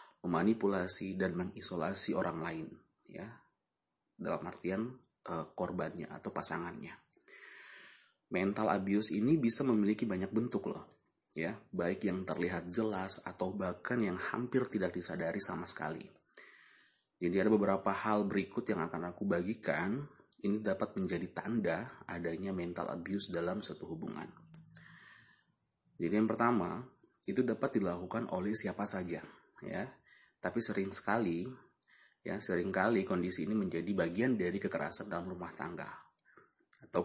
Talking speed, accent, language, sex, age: 125 wpm, native, Indonesian, male, 30-49